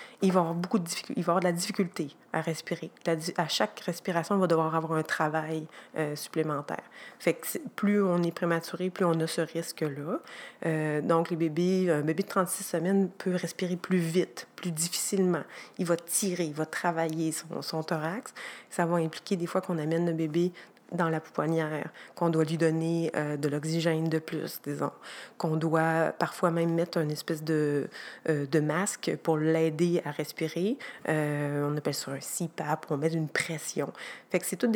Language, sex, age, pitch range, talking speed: French, female, 30-49, 160-185 Hz, 195 wpm